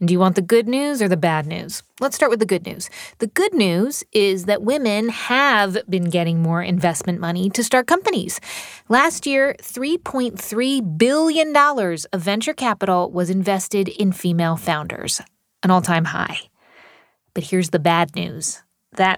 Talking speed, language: 165 wpm, English